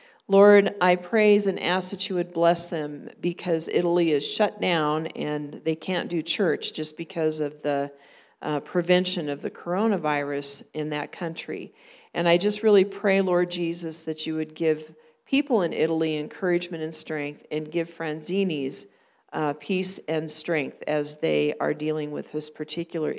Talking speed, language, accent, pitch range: 165 wpm, English, American, 155-190 Hz